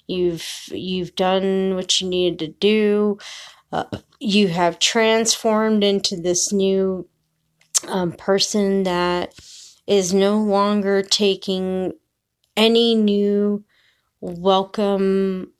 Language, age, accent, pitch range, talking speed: English, 30-49, American, 175-200 Hz, 95 wpm